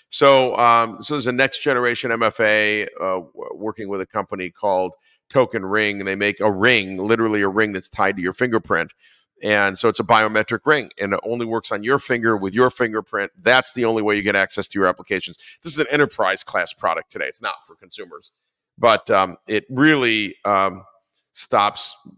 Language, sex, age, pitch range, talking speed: English, male, 50-69, 100-120 Hz, 195 wpm